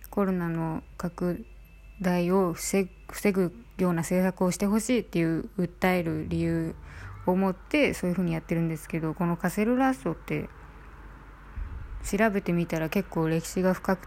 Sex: female